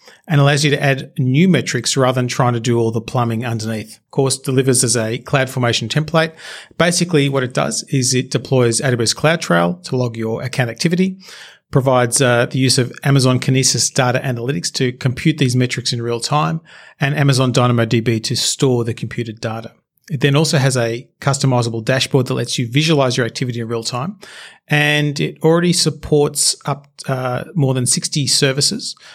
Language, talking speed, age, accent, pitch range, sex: English, 185 wpm, 40-59, Australian, 125-150 Hz, male